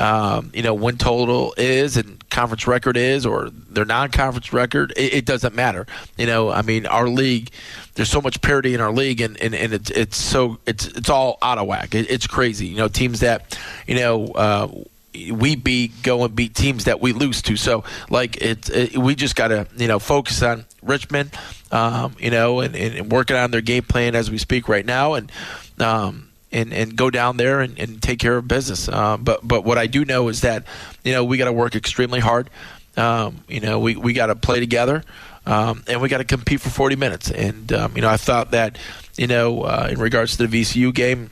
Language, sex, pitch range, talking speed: English, male, 115-125 Hz, 220 wpm